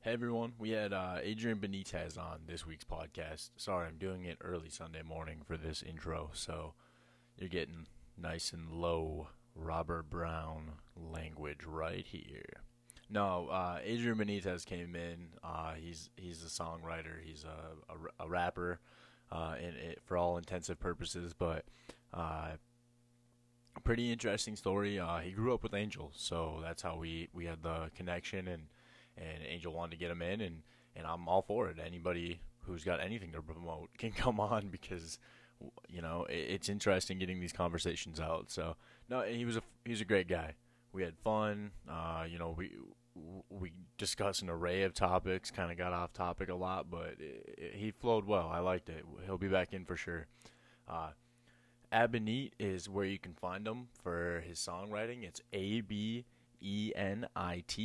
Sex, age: male, 20-39